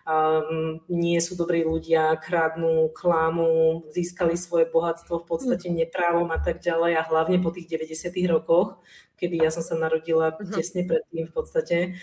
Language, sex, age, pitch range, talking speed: Czech, female, 30-49, 160-200 Hz, 160 wpm